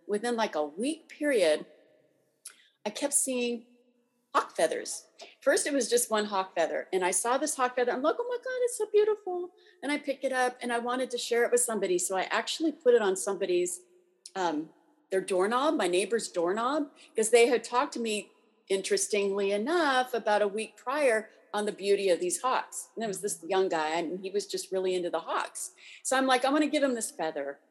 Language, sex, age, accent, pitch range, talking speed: English, female, 40-59, American, 195-280 Hz, 210 wpm